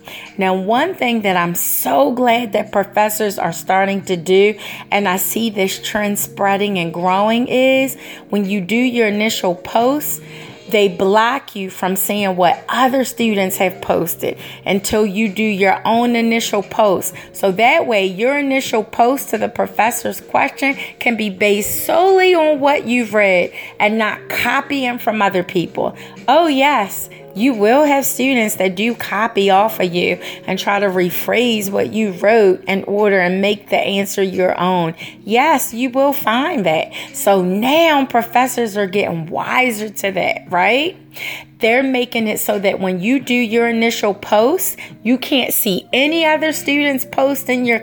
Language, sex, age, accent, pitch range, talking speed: English, female, 30-49, American, 195-250 Hz, 165 wpm